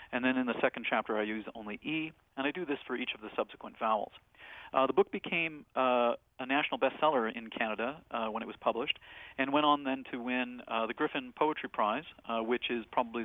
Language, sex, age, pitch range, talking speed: English, male, 40-59, 115-140 Hz, 225 wpm